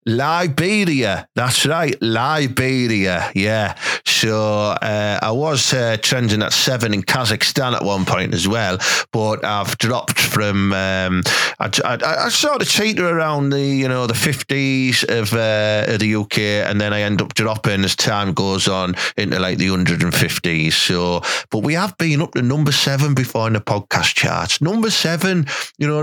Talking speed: 170 wpm